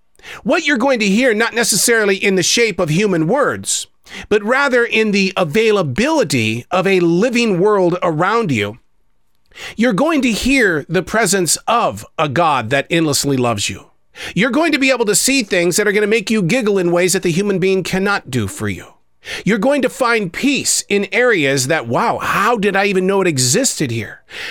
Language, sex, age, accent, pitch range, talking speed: English, male, 40-59, American, 140-210 Hz, 195 wpm